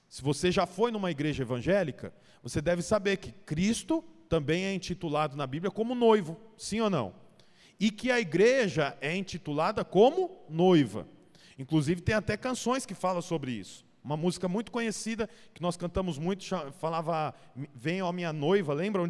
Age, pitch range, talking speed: 40-59, 170-240 Hz, 165 wpm